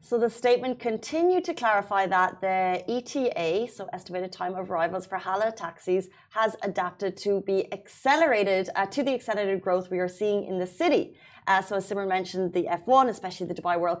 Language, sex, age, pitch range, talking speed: Arabic, female, 30-49, 185-215 Hz, 190 wpm